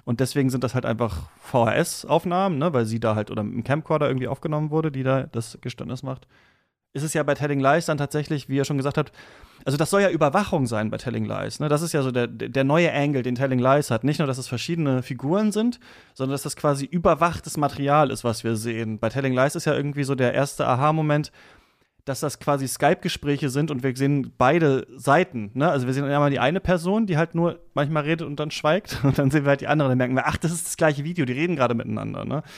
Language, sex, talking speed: German, male, 240 wpm